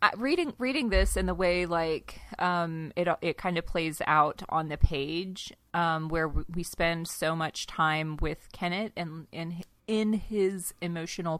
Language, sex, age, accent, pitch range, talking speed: English, female, 30-49, American, 155-185 Hz, 165 wpm